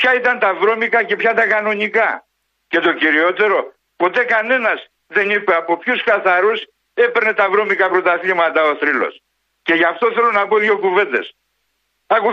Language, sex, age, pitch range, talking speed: Greek, male, 60-79, 170-225 Hz, 160 wpm